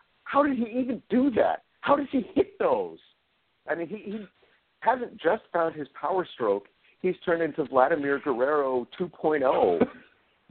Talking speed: 155 wpm